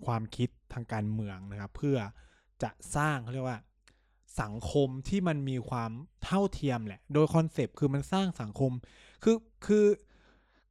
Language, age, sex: Thai, 20-39, male